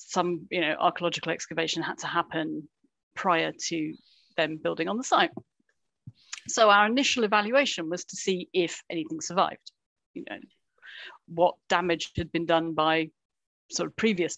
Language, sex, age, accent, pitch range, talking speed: English, female, 40-59, British, 165-205 Hz, 150 wpm